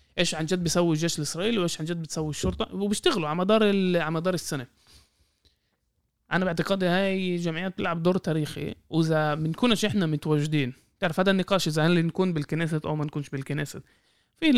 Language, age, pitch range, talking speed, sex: Arabic, 20-39, 155-205 Hz, 160 wpm, male